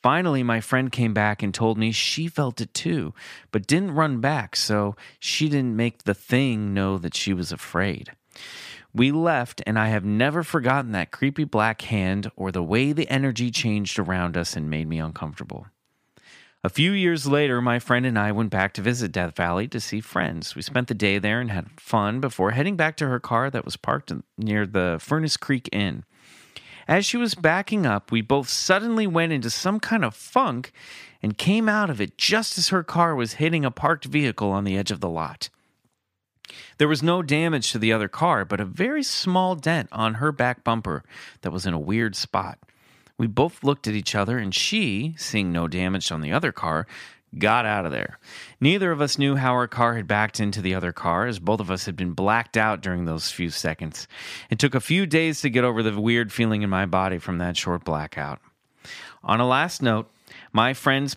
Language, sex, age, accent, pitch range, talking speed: English, male, 30-49, American, 95-140 Hz, 210 wpm